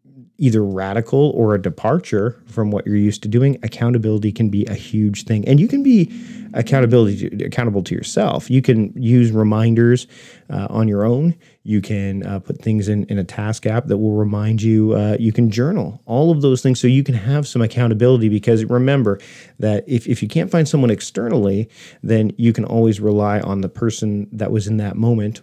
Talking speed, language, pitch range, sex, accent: 200 wpm, English, 105-125 Hz, male, American